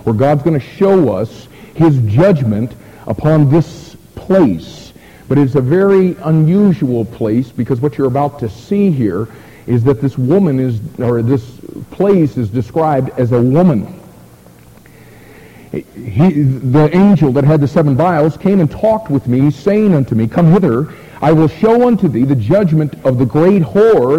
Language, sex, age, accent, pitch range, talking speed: English, male, 50-69, American, 135-185 Hz, 165 wpm